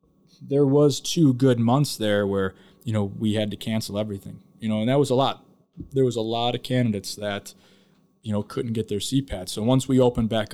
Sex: male